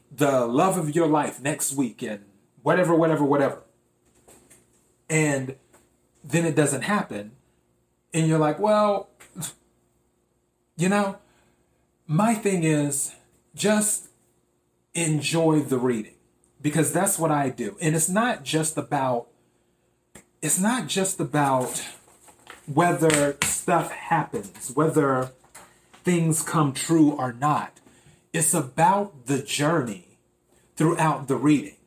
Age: 30-49